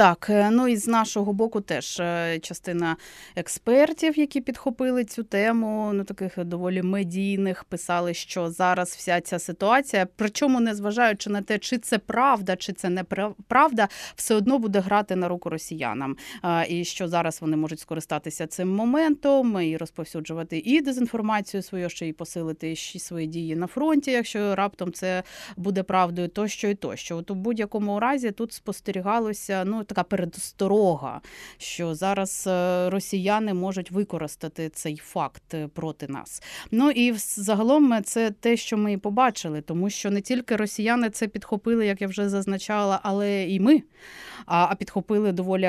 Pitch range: 175-215 Hz